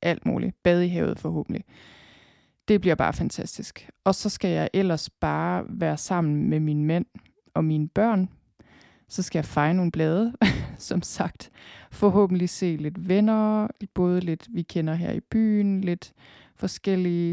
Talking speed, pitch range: 155 wpm, 165-205 Hz